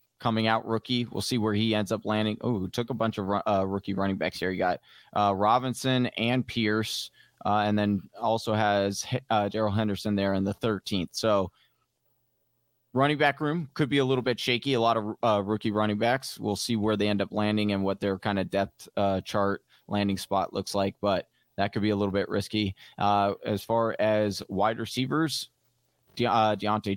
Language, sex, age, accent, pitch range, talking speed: English, male, 20-39, American, 100-120 Hz, 200 wpm